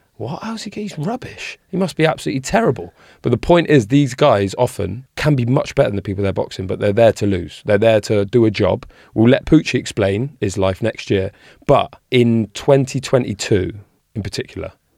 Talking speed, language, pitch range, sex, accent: 200 wpm, English, 95-125 Hz, male, British